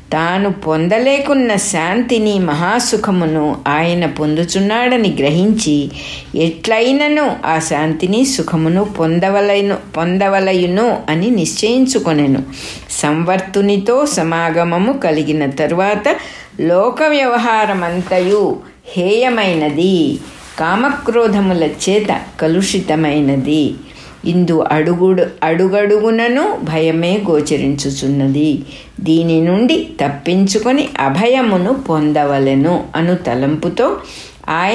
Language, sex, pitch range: English, female, 155-220 Hz